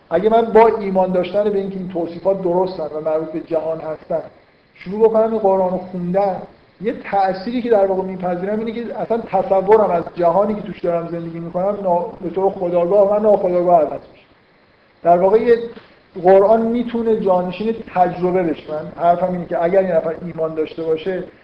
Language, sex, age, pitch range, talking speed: Persian, male, 50-69, 170-195 Hz, 175 wpm